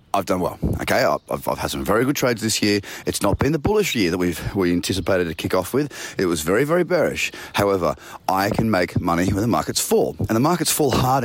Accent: Australian